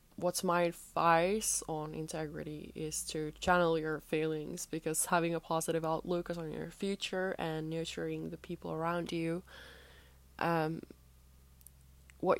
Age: 20-39